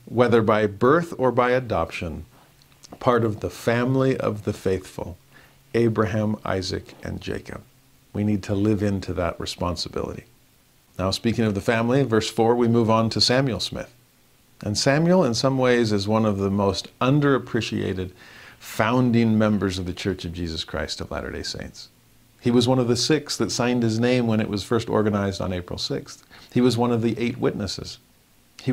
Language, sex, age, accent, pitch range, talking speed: English, male, 50-69, American, 105-130 Hz, 180 wpm